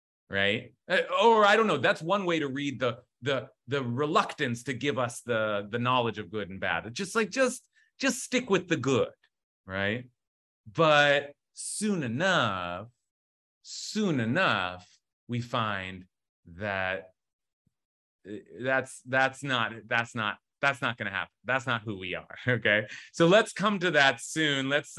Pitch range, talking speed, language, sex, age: 105-165 Hz, 160 wpm, English, male, 30-49